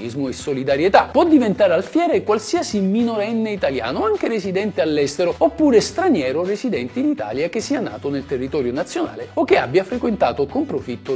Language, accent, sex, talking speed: Italian, native, male, 150 wpm